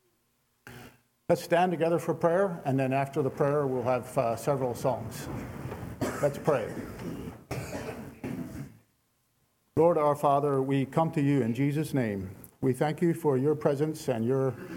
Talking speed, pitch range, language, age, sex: 140 wpm, 125-155 Hz, English, 50-69, male